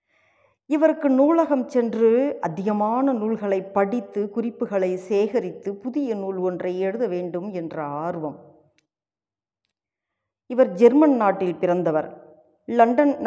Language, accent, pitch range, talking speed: Tamil, native, 175-245 Hz, 90 wpm